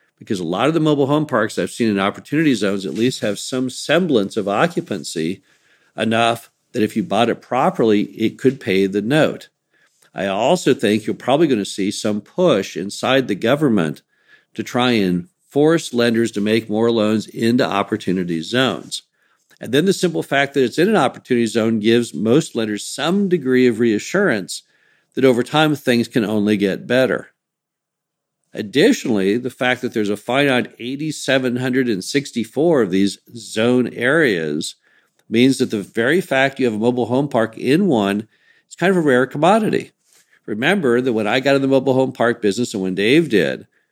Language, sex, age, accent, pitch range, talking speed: English, male, 50-69, American, 110-135 Hz, 175 wpm